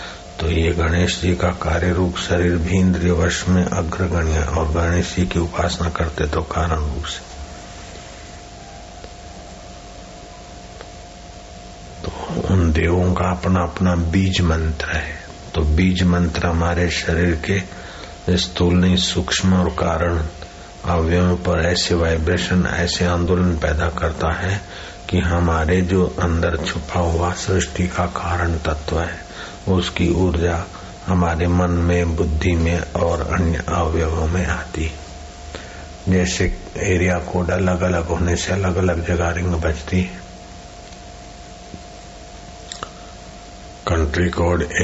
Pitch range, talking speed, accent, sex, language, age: 80-90 Hz, 110 wpm, native, male, Hindi, 60-79